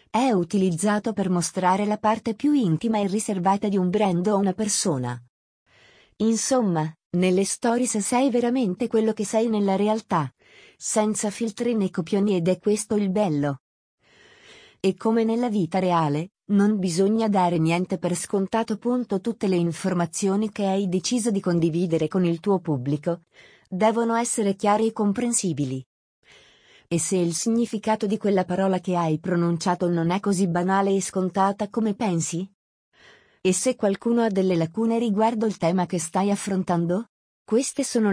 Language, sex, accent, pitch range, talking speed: Italian, female, native, 180-220 Hz, 150 wpm